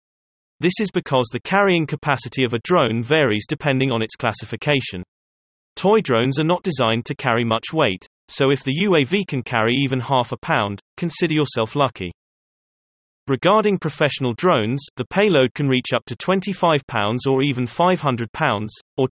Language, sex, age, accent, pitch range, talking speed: English, male, 30-49, British, 115-160 Hz, 165 wpm